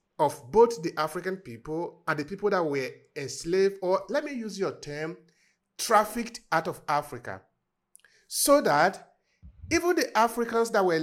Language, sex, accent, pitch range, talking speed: English, male, Nigerian, 170-255 Hz, 150 wpm